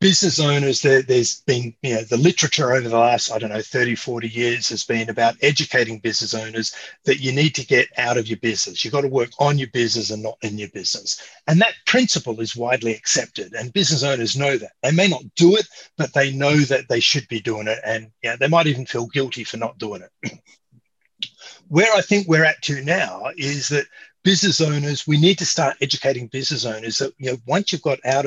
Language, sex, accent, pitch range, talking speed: English, male, Australian, 120-160 Hz, 215 wpm